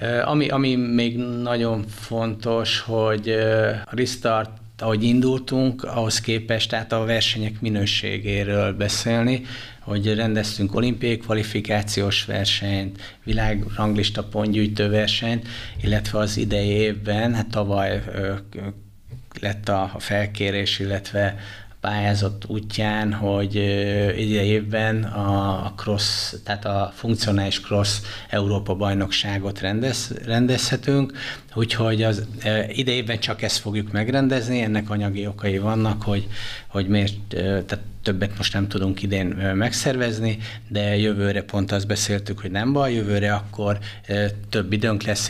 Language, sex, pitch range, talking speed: Hungarian, male, 100-110 Hz, 110 wpm